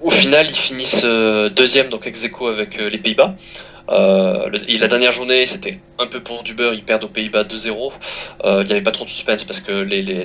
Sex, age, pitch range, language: male, 20-39, 110-170 Hz, French